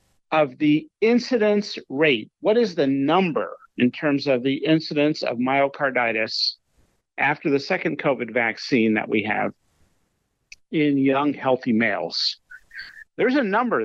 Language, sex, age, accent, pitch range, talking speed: English, male, 50-69, American, 130-170 Hz, 130 wpm